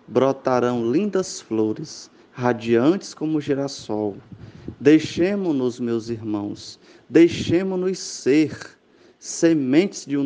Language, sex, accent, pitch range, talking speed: Portuguese, male, Brazilian, 120-160 Hz, 80 wpm